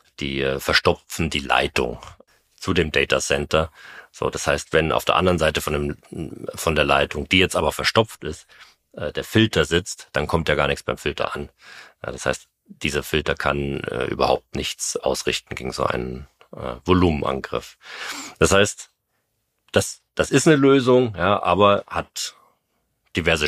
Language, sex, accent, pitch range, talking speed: German, male, German, 70-90 Hz, 165 wpm